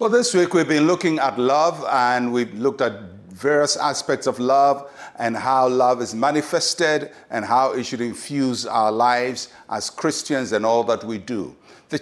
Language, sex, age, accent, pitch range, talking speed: English, male, 50-69, Nigerian, 120-160 Hz, 180 wpm